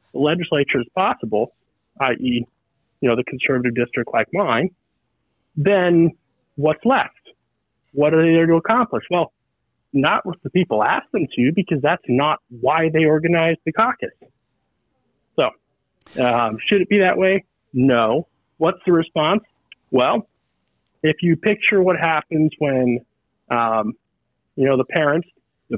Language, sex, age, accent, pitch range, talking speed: English, male, 40-59, American, 135-180 Hz, 140 wpm